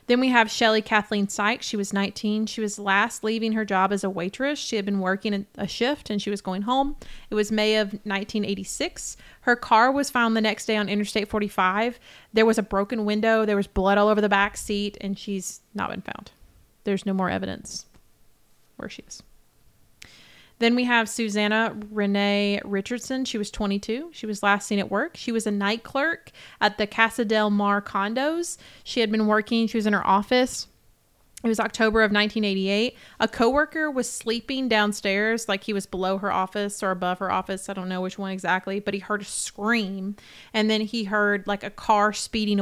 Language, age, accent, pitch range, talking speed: English, 30-49, American, 200-225 Hz, 200 wpm